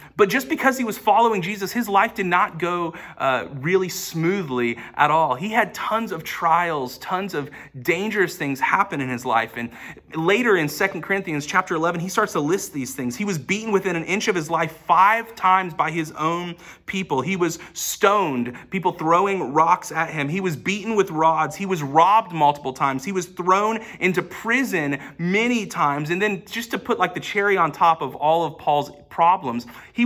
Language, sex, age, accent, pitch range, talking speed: English, male, 30-49, American, 155-200 Hz, 200 wpm